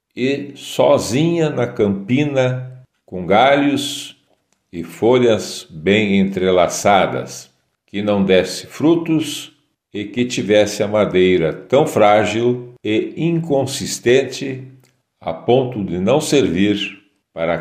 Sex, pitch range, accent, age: male, 95-140 Hz, Brazilian, 60-79